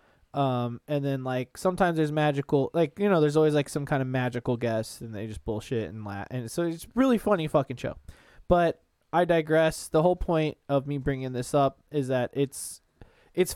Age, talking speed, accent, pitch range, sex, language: 20-39, 205 wpm, American, 125-165 Hz, male, English